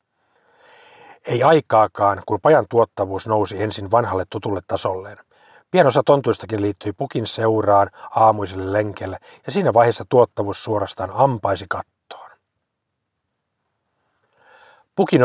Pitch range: 100-125 Hz